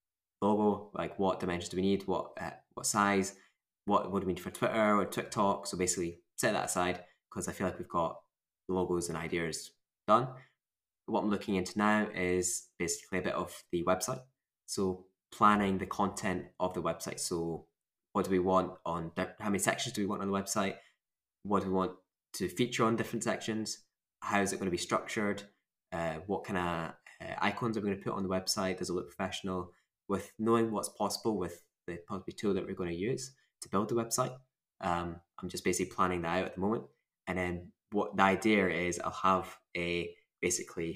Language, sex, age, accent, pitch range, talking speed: English, male, 10-29, British, 90-100 Hz, 200 wpm